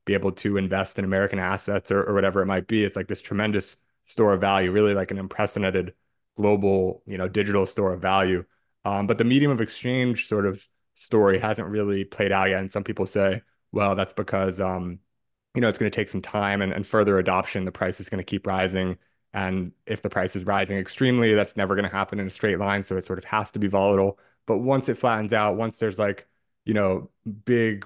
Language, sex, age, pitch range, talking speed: English, male, 20-39, 95-105 Hz, 230 wpm